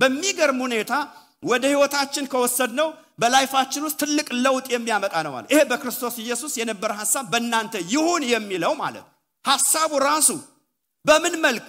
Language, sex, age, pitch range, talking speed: English, male, 50-69, 245-315 Hz, 90 wpm